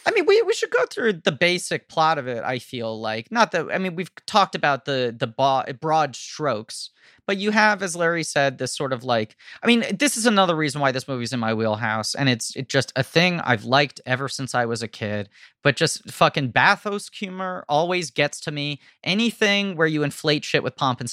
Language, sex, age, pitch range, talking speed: English, male, 30-49, 125-170 Hz, 225 wpm